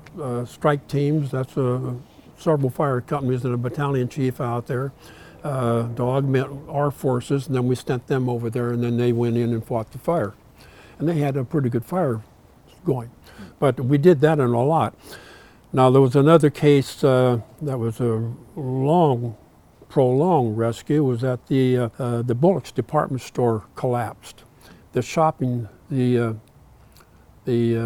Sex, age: male, 60-79